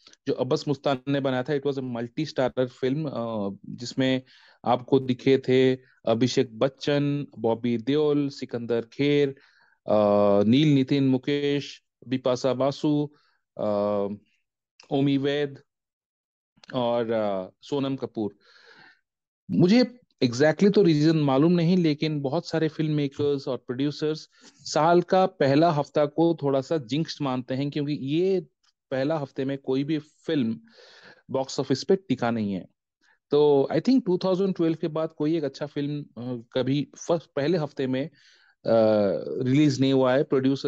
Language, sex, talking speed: Hindi, male, 105 wpm